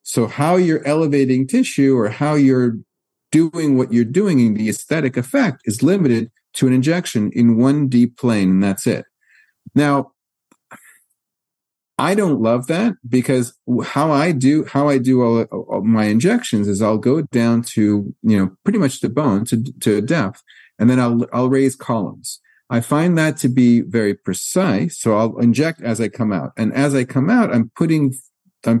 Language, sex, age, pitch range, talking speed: English, male, 50-69, 115-150 Hz, 180 wpm